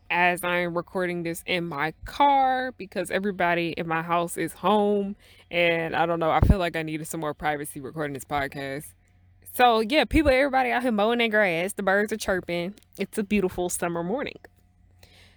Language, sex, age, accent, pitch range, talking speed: English, female, 20-39, American, 155-210 Hz, 185 wpm